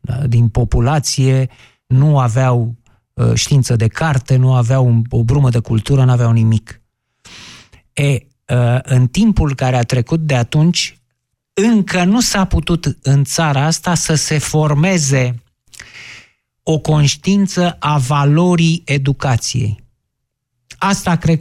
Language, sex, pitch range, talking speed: Romanian, male, 130-165 Hz, 110 wpm